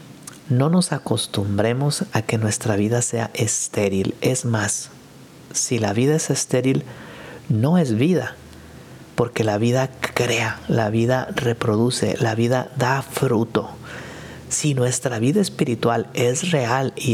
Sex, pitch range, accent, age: male, 110-135 Hz, Mexican, 50-69